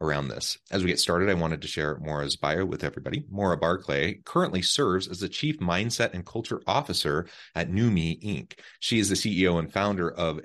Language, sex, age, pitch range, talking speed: English, male, 30-49, 80-100 Hz, 205 wpm